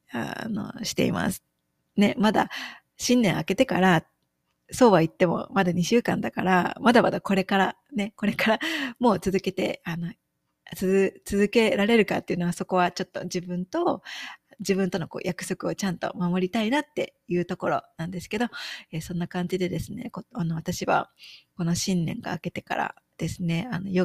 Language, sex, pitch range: Japanese, female, 175-215 Hz